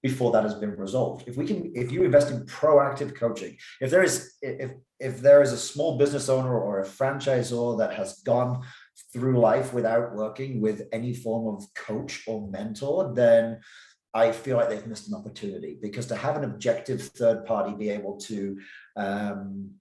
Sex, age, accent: male, 30-49, British